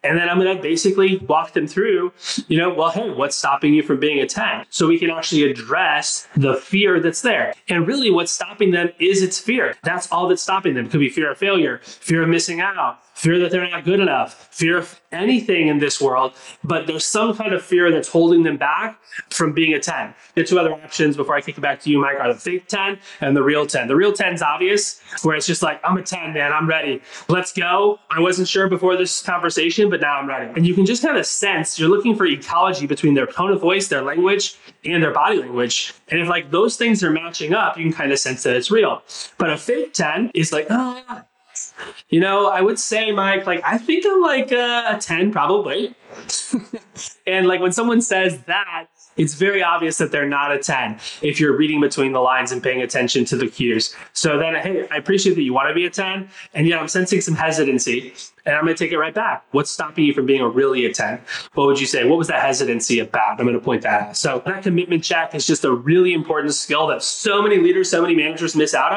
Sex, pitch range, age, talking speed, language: male, 150-195 Hz, 20-39, 240 wpm, English